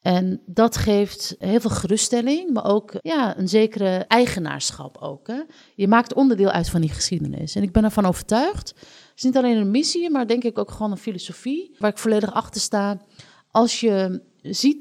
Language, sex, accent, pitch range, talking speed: Dutch, female, Dutch, 175-225 Hz, 180 wpm